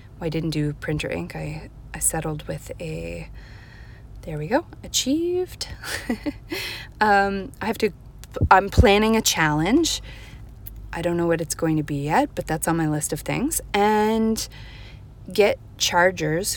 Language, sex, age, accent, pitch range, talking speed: English, female, 30-49, American, 145-205 Hz, 150 wpm